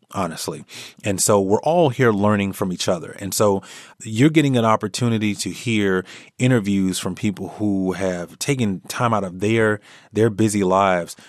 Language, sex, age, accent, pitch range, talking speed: English, male, 30-49, American, 95-125 Hz, 165 wpm